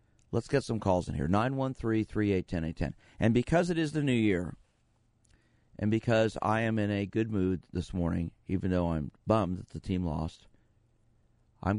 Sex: male